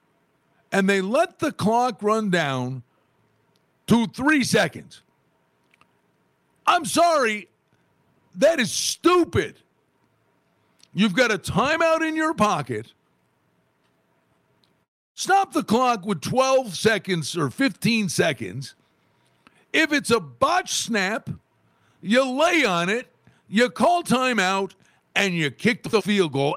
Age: 50-69